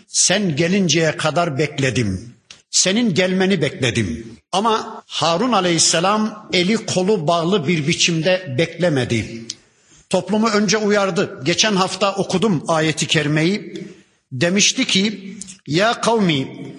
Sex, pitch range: male, 175-215 Hz